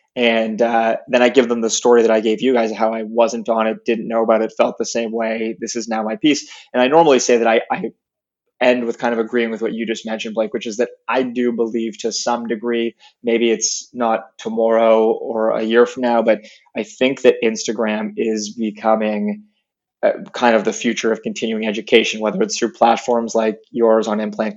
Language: English